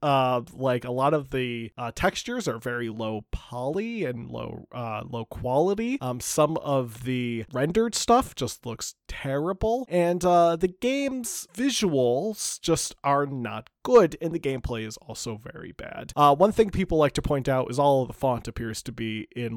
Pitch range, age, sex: 120-175 Hz, 20-39, male